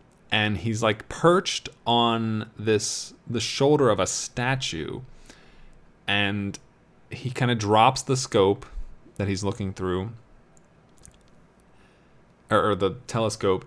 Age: 20-39